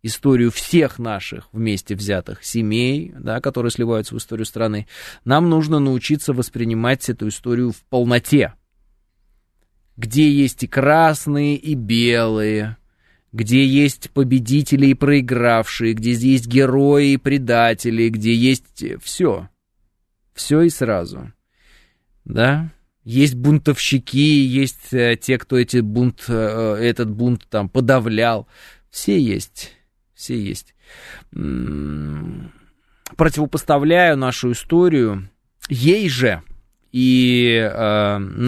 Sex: male